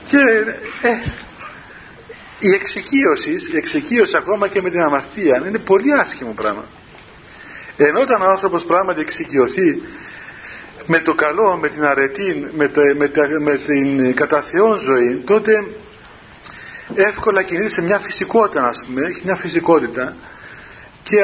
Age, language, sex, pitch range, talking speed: 40-59, Greek, male, 175-225 Hz, 135 wpm